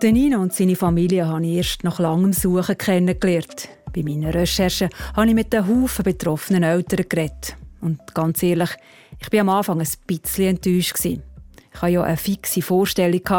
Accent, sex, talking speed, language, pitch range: Swiss, female, 170 wpm, German, 160-185 Hz